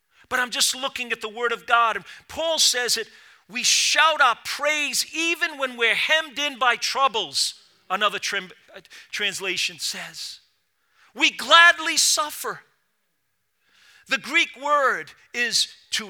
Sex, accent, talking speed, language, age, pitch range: male, American, 135 wpm, English, 40-59, 190-290 Hz